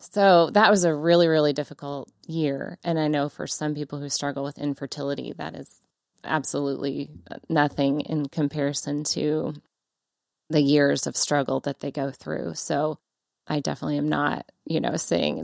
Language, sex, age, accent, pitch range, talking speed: English, female, 20-39, American, 145-165 Hz, 160 wpm